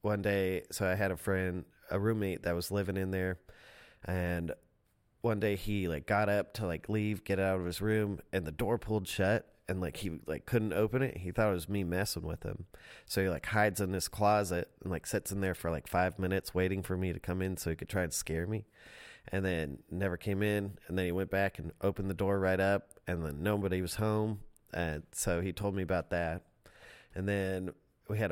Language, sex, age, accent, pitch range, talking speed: English, male, 30-49, American, 90-105 Hz, 235 wpm